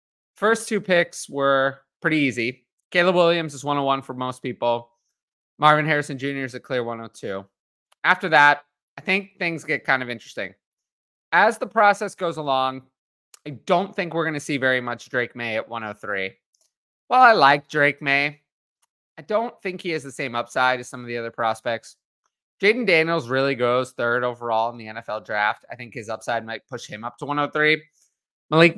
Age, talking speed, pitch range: 30-49, 180 wpm, 115-145 Hz